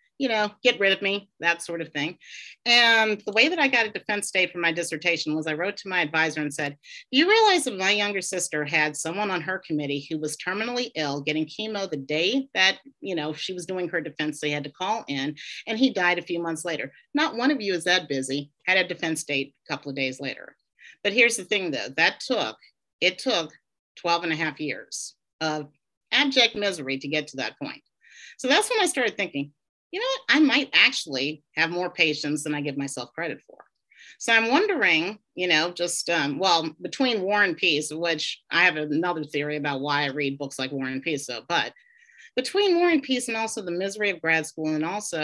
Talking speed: 225 wpm